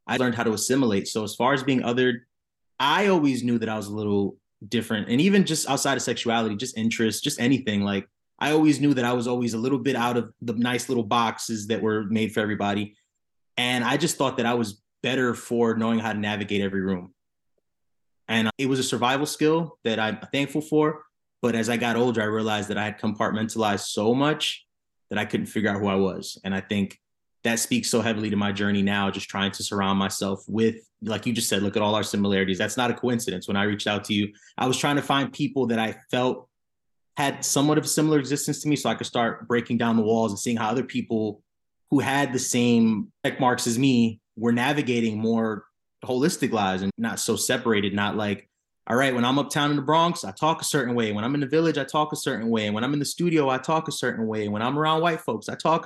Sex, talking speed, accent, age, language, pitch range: male, 240 wpm, American, 20-39, English, 105-135 Hz